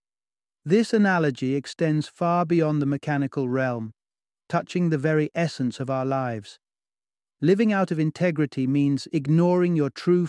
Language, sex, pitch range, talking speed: English, male, 130-160 Hz, 135 wpm